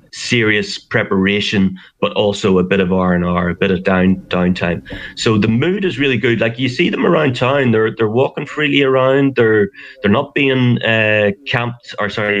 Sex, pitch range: male, 95-120 Hz